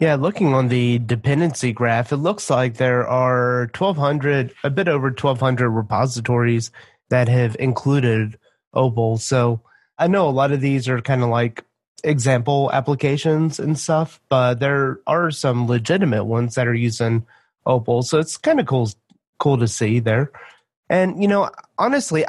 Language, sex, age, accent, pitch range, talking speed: English, male, 30-49, American, 120-150 Hz, 160 wpm